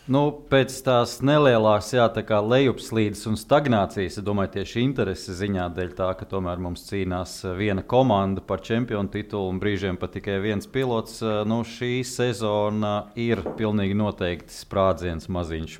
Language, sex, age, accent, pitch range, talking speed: English, male, 30-49, Slovak, 95-120 Hz, 145 wpm